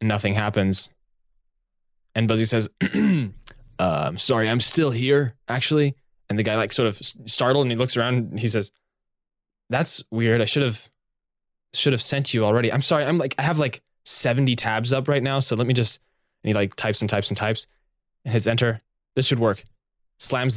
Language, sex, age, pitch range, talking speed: English, male, 10-29, 115-140 Hz, 195 wpm